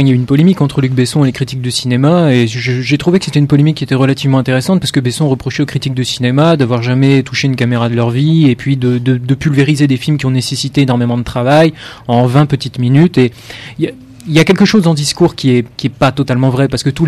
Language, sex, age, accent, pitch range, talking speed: French, male, 20-39, French, 125-145 Hz, 280 wpm